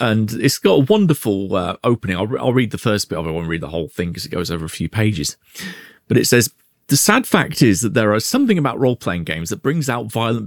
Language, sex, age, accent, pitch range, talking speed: English, male, 40-59, British, 105-160 Hz, 275 wpm